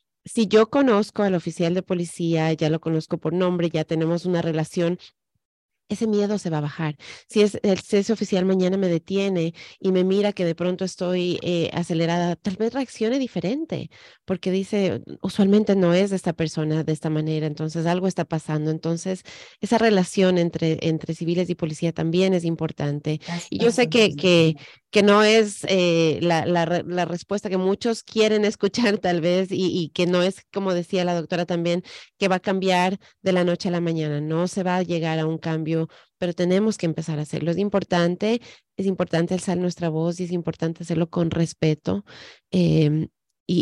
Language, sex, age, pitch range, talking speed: Spanish, female, 30-49, 160-190 Hz, 185 wpm